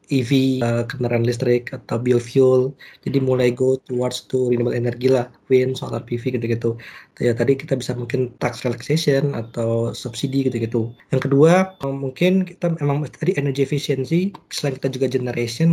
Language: Indonesian